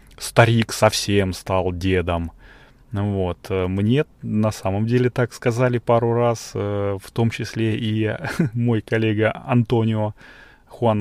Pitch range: 100-125 Hz